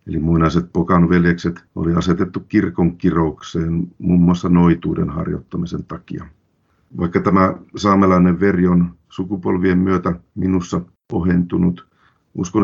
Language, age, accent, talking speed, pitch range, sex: Finnish, 50-69, native, 115 wpm, 85-95 Hz, male